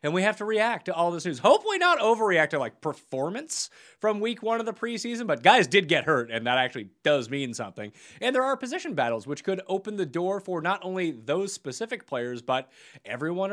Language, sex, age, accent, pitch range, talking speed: English, male, 30-49, American, 135-225 Hz, 220 wpm